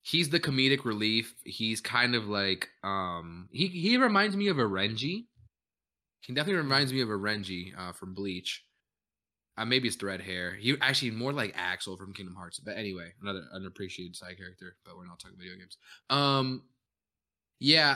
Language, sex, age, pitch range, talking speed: English, male, 20-39, 95-120 Hz, 180 wpm